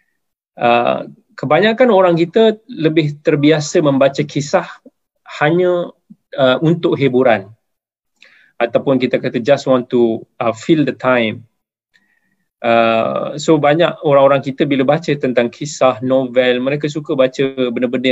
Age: 20-39